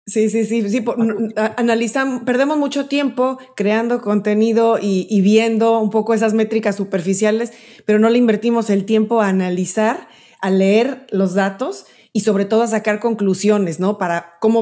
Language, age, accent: Spanish, 30-49, Mexican